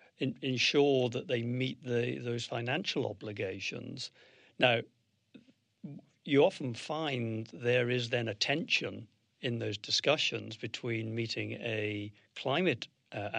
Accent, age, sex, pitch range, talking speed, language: British, 50-69, male, 105-130 Hz, 110 wpm, English